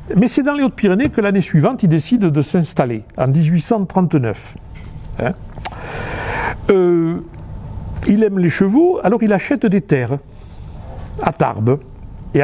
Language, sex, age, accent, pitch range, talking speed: French, male, 60-79, French, 120-195 Hz, 135 wpm